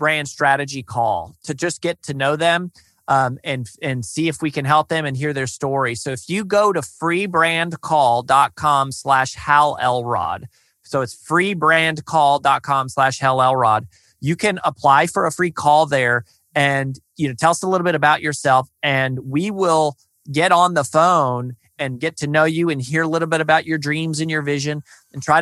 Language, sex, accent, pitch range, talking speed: English, male, American, 135-165 Hz, 190 wpm